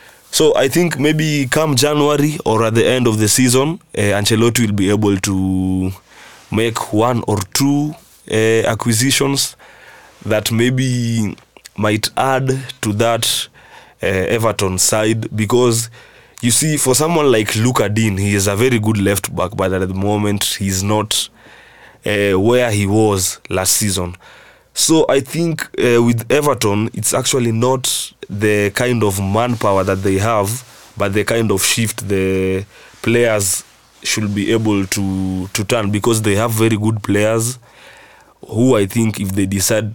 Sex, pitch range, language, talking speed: male, 100-120 Hz, English, 155 wpm